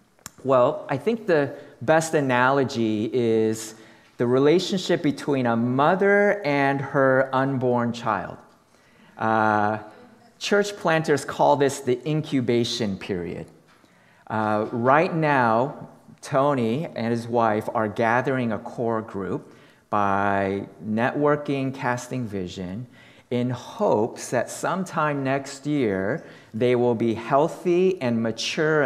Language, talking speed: English, 110 wpm